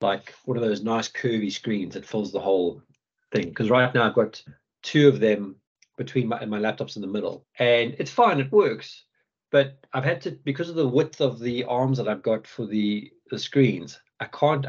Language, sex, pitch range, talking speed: English, male, 110-140 Hz, 215 wpm